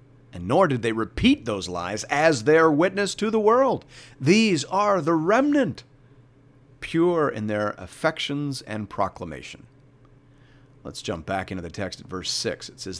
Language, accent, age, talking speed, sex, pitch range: English, American, 50-69, 155 wpm, male, 110-140 Hz